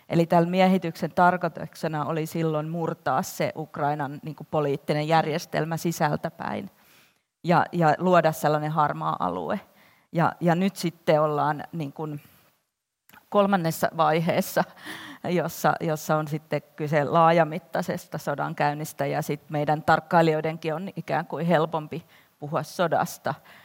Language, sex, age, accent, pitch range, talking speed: Finnish, female, 30-49, native, 155-175 Hz, 110 wpm